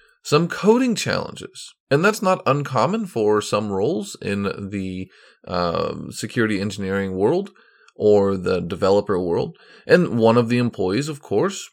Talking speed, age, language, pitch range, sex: 140 wpm, 30-49, English, 100-140 Hz, male